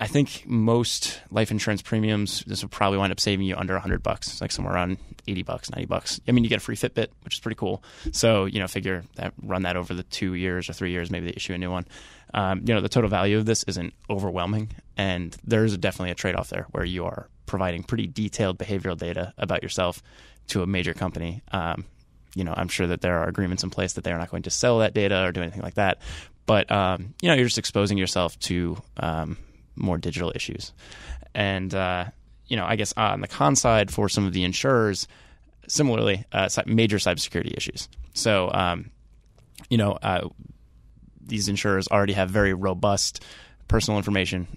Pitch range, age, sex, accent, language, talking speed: 90-105 Hz, 20-39, male, American, English, 215 wpm